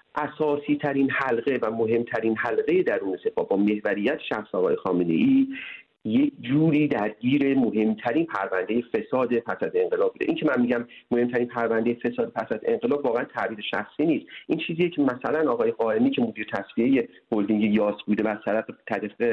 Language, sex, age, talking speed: Persian, male, 40-59, 160 wpm